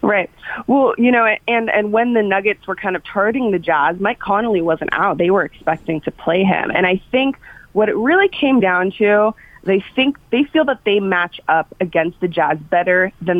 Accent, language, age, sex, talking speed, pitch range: American, English, 20-39, female, 210 wpm, 160-205 Hz